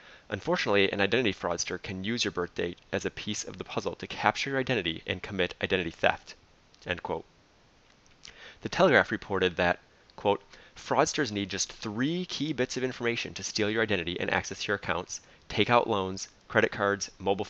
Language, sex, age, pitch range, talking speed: English, male, 30-49, 95-115 Hz, 180 wpm